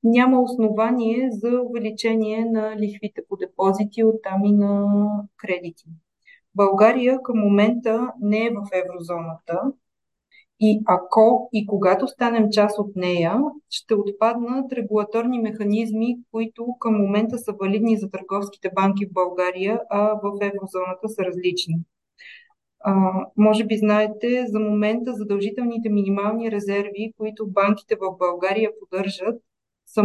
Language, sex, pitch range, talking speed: Bulgarian, female, 195-225 Hz, 125 wpm